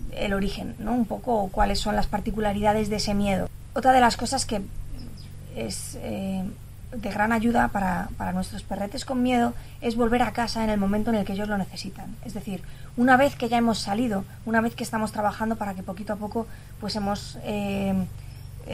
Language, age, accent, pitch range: Spanish, 20-39, Spanish, 190-235 Hz